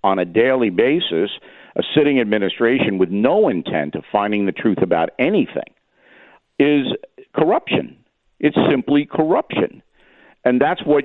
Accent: American